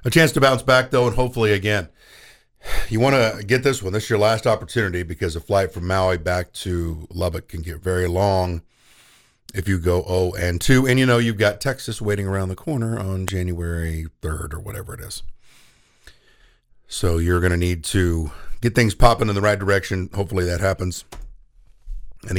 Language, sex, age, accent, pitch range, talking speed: English, male, 50-69, American, 90-115 Hz, 195 wpm